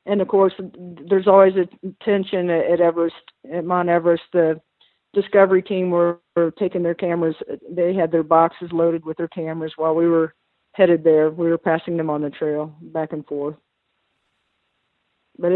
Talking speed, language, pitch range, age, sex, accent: 170 wpm, English, 165-190 Hz, 50-69, female, American